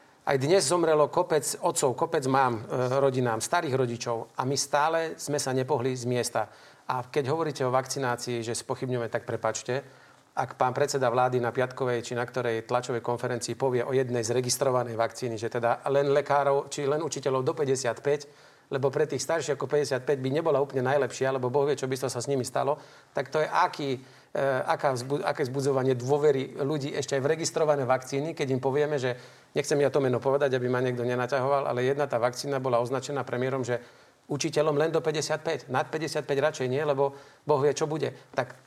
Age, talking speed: 40-59, 190 wpm